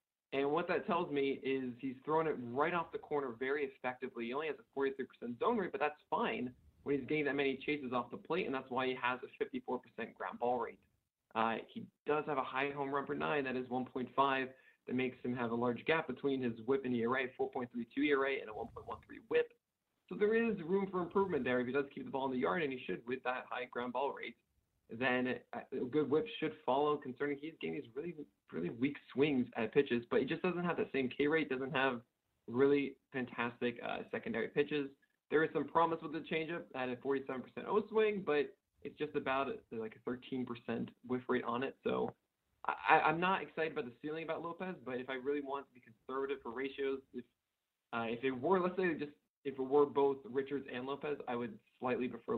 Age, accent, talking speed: 20-39, American, 225 wpm